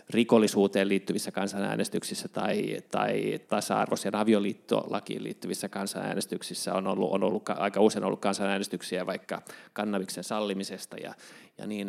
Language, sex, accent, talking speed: Finnish, male, native, 115 wpm